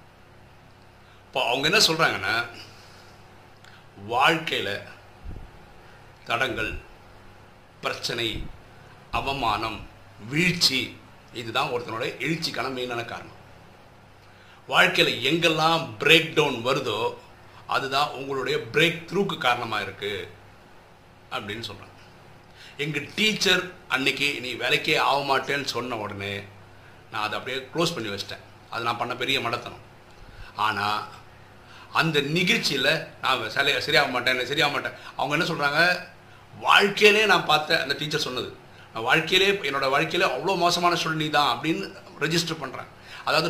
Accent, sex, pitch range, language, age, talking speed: native, male, 105-165 Hz, Tamil, 50-69, 105 wpm